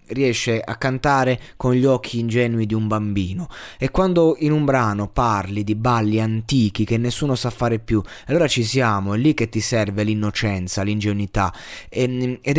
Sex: male